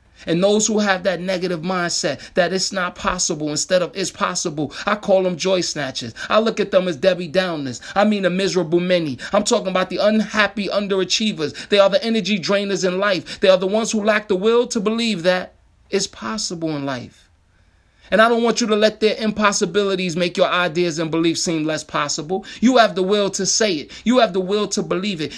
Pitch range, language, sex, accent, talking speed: 180-225 Hz, English, male, American, 215 wpm